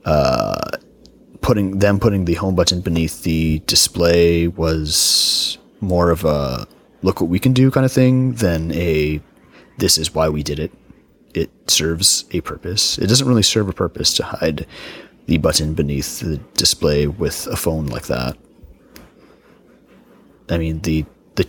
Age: 30-49